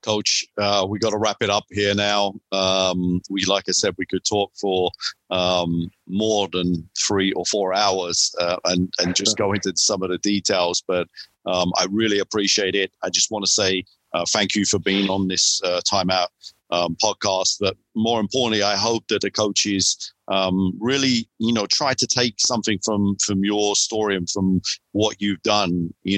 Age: 50-69